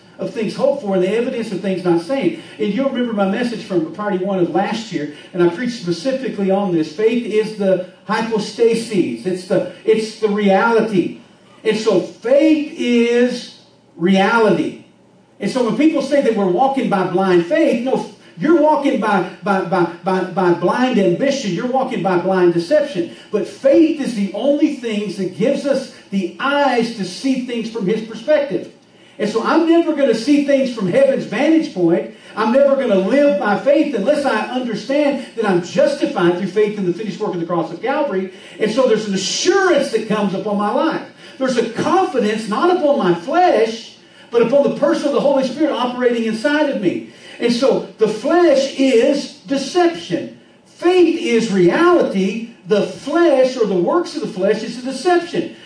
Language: English